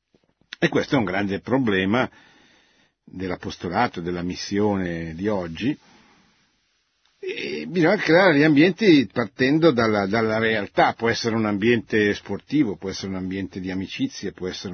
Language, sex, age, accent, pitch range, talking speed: Italian, male, 50-69, native, 100-150 Hz, 135 wpm